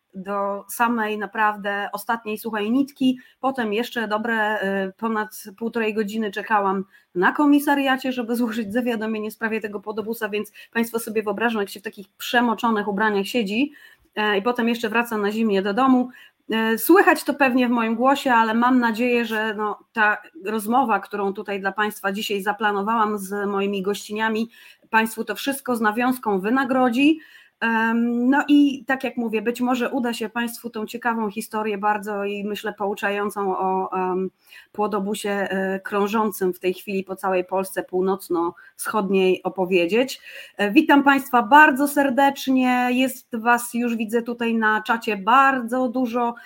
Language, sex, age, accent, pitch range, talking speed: Polish, female, 30-49, native, 205-250 Hz, 145 wpm